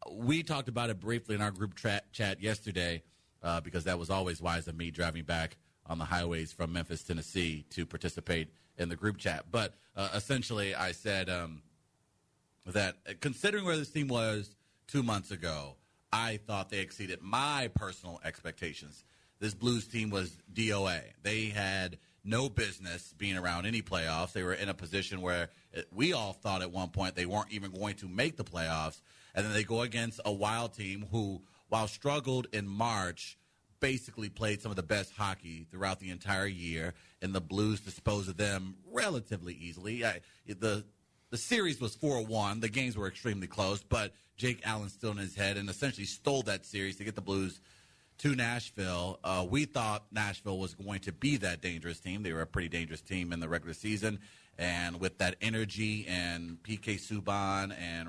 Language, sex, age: English, male, 30-49